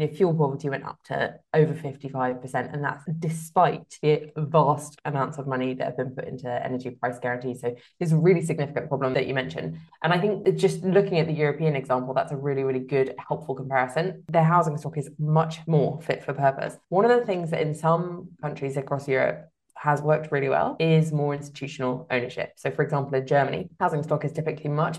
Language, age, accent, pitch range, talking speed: English, 20-39, British, 130-155 Hz, 205 wpm